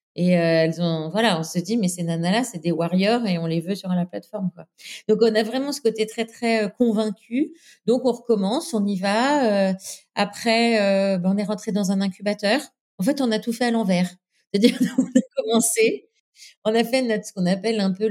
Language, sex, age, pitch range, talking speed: French, female, 40-59, 185-225 Hz, 225 wpm